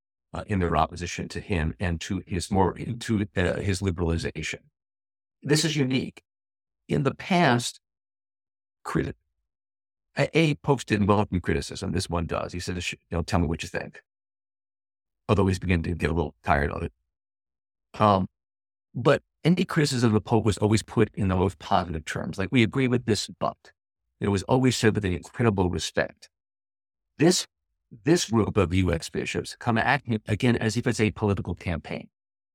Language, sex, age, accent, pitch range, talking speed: English, male, 50-69, American, 85-110 Hz, 170 wpm